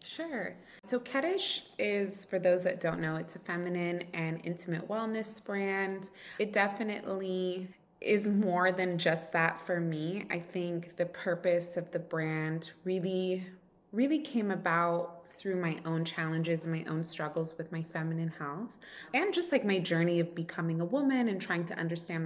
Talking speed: 165 wpm